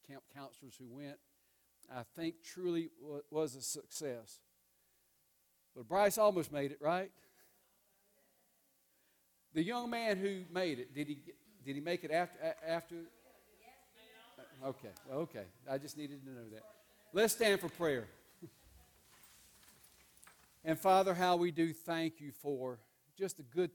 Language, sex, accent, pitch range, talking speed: English, male, American, 130-175 Hz, 135 wpm